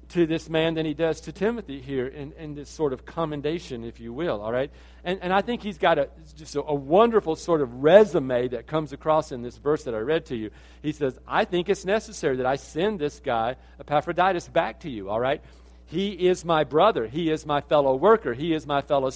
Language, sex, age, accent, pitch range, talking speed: English, male, 50-69, American, 135-185 Hz, 230 wpm